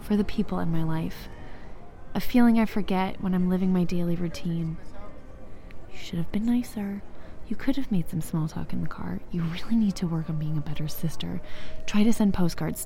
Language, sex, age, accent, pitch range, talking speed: English, female, 20-39, American, 155-205 Hz, 210 wpm